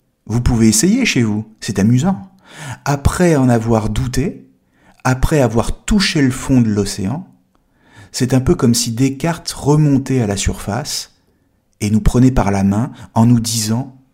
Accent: French